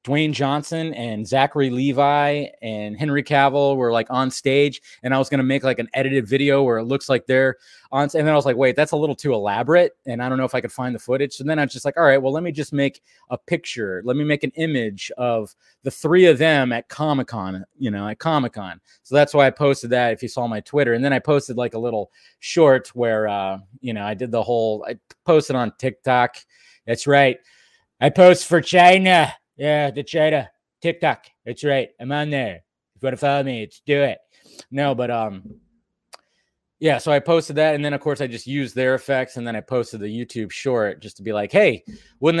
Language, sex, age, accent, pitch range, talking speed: English, male, 20-39, American, 115-145 Hz, 240 wpm